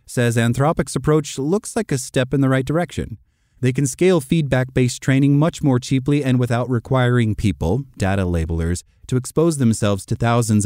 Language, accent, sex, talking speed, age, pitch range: English, American, male, 170 wpm, 30-49, 100-135 Hz